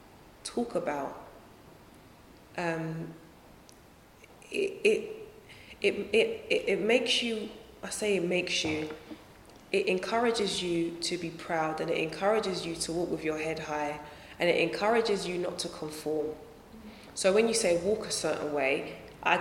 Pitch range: 160-210 Hz